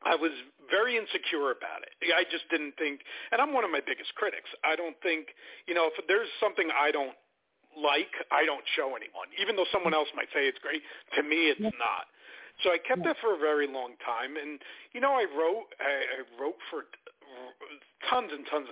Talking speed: 205 wpm